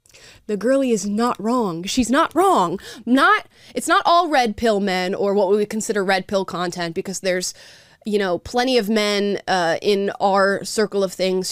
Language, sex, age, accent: English, female, 20-39, American